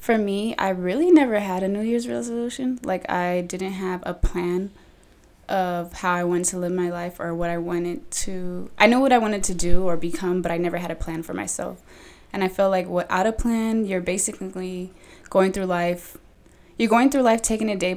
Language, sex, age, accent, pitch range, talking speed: English, female, 20-39, American, 175-205 Hz, 215 wpm